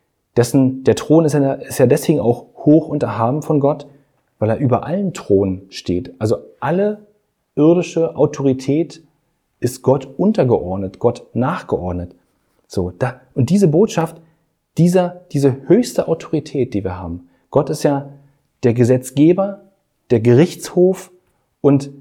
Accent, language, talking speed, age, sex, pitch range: German, German, 130 wpm, 40-59, male, 110-155 Hz